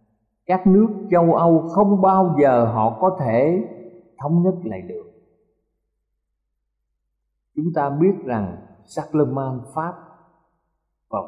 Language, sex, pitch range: Thai, male, 120-180 Hz